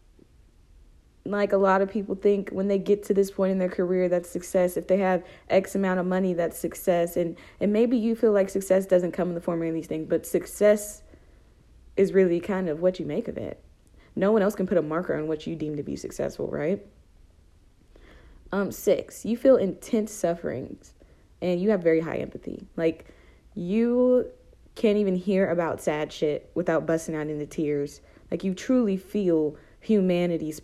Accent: American